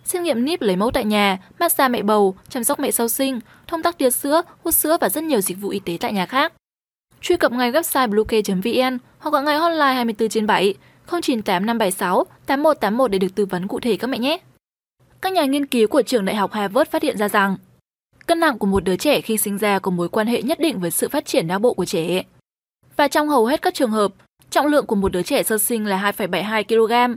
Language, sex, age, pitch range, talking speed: Vietnamese, female, 10-29, 210-280 Hz, 240 wpm